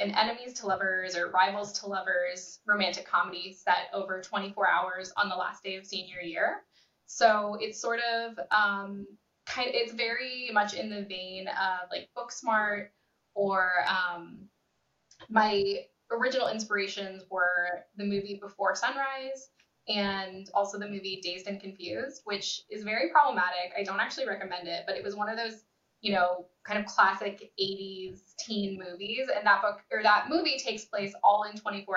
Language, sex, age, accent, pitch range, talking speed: English, female, 10-29, American, 185-215 Hz, 165 wpm